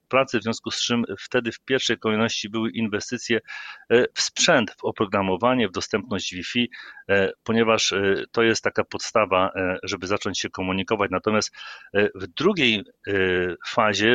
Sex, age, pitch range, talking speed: male, 40-59, 100-115 Hz, 130 wpm